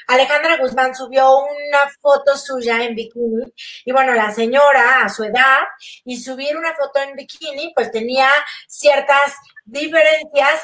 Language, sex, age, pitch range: Spanish, female, 30-49, 245-290 Hz